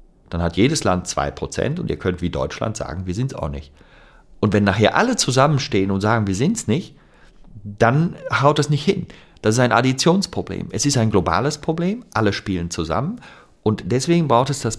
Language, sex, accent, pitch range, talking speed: German, male, German, 95-140 Hz, 200 wpm